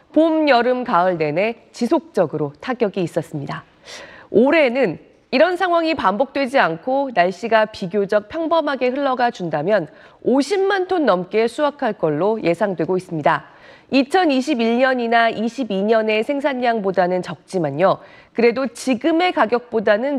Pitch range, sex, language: 185-270 Hz, female, Korean